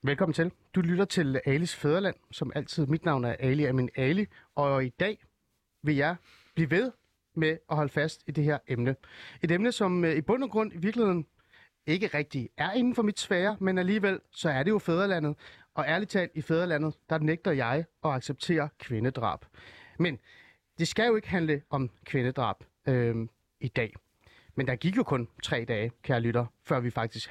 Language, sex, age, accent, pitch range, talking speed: Danish, male, 30-49, native, 130-180 Hz, 195 wpm